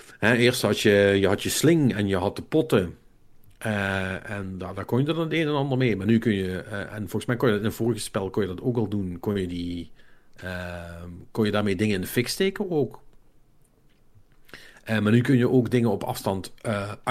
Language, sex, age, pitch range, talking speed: Dutch, male, 50-69, 100-120 Hz, 245 wpm